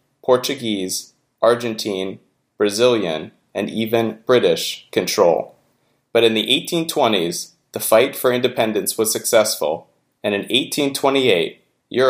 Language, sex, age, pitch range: English, male, 30-49, 105-140 Hz